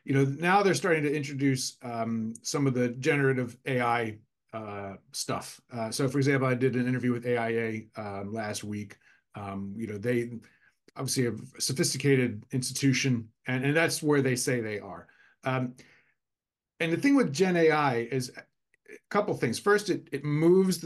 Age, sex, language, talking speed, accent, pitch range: 40-59, male, English, 175 wpm, American, 120-145 Hz